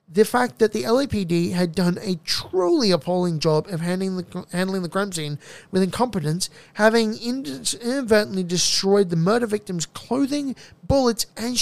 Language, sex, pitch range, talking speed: English, male, 170-220 Hz, 140 wpm